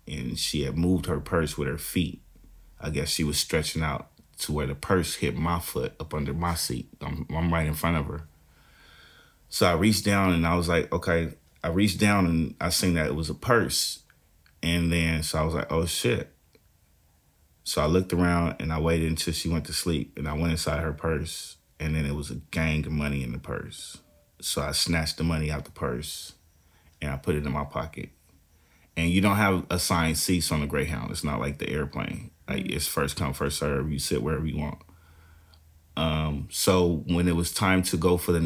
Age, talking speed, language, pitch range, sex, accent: 30-49, 215 wpm, English, 75-85 Hz, male, American